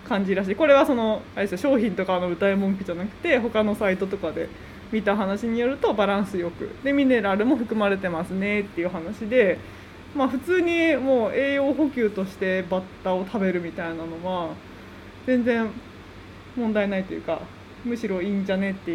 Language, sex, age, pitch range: Japanese, female, 20-39, 180-235 Hz